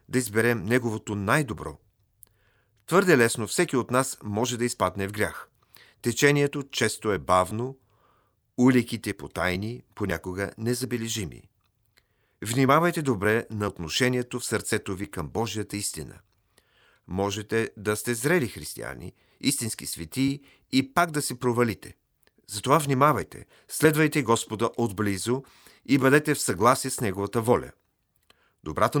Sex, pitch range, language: male, 105-135 Hz, Bulgarian